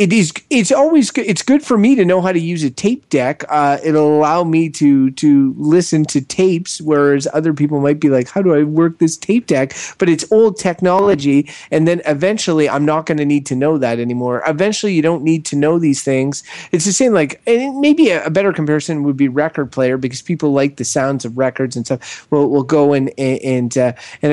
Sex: male